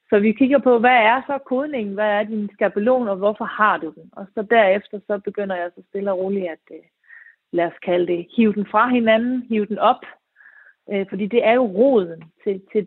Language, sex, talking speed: Danish, female, 215 wpm